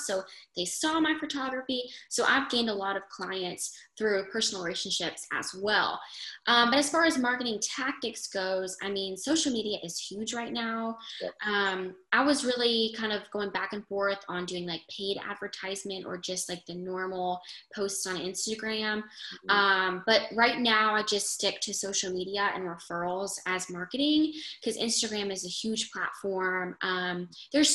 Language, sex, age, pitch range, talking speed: English, female, 10-29, 190-230 Hz, 170 wpm